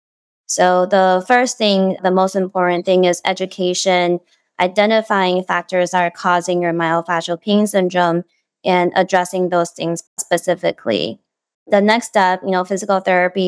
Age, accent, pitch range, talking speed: 20-39, American, 180-195 Hz, 140 wpm